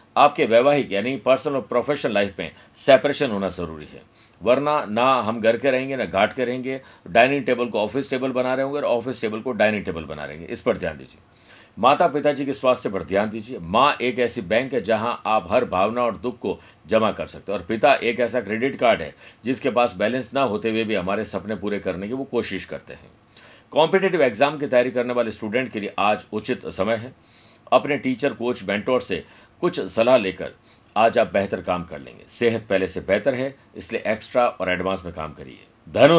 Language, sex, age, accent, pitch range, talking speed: Hindi, male, 50-69, native, 110-135 Hz, 210 wpm